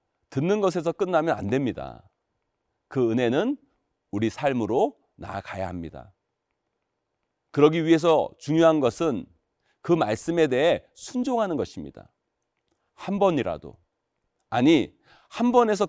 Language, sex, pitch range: Korean, male, 110-180 Hz